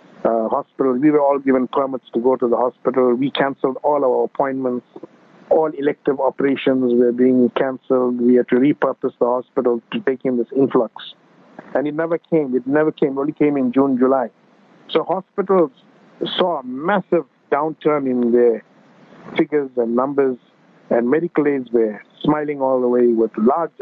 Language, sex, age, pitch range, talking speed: English, male, 50-69, 125-150 Hz, 170 wpm